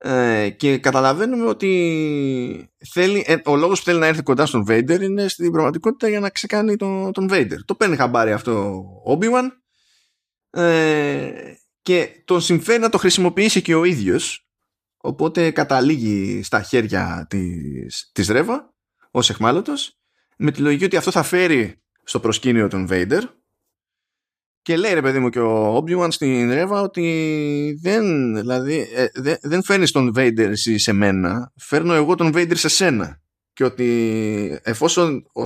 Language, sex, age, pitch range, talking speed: Greek, male, 20-39, 110-175 Hz, 145 wpm